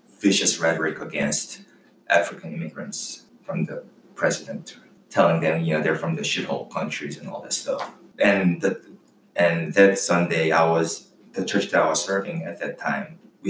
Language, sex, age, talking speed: English, male, 20-39, 165 wpm